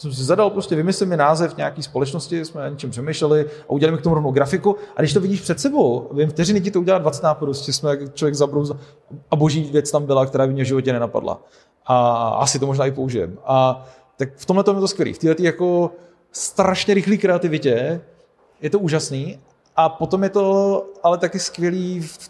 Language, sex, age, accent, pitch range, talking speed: Czech, male, 30-49, native, 140-170 Hz, 210 wpm